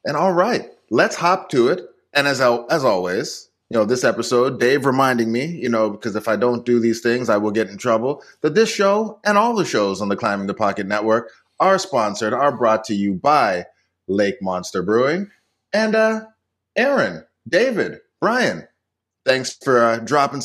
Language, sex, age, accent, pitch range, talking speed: English, male, 30-49, American, 115-155 Hz, 190 wpm